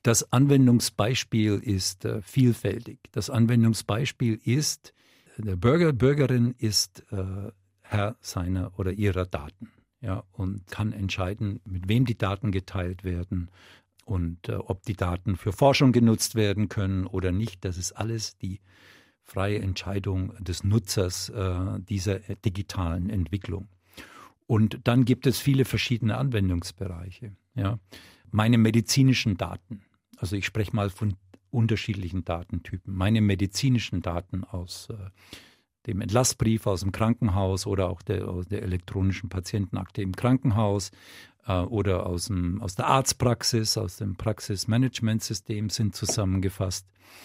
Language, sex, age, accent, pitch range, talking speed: German, male, 50-69, German, 95-115 Hz, 125 wpm